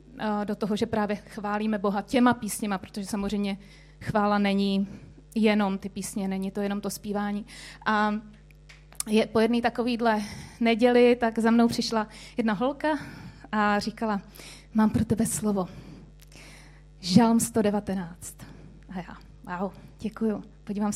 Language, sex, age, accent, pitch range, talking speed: Czech, female, 30-49, native, 200-235 Hz, 130 wpm